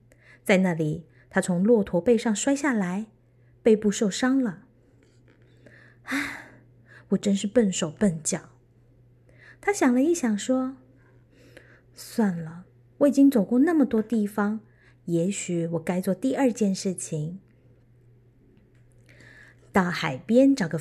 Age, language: 30-49, Chinese